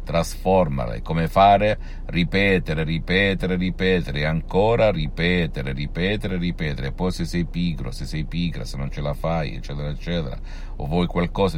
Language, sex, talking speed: Italian, male, 150 wpm